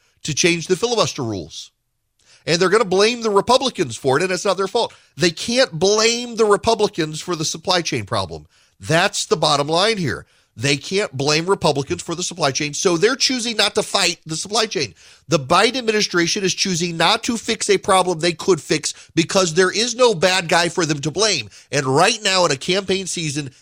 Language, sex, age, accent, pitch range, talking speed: English, male, 40-59, American, 115-190 Hz, 205 wpm